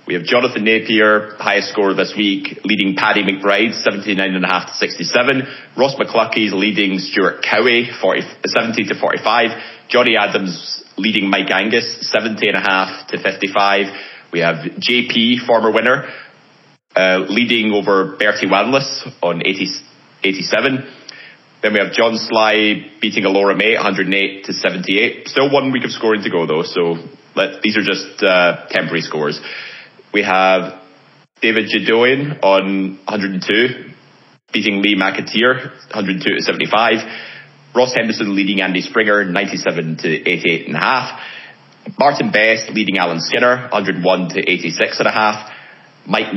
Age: 30-49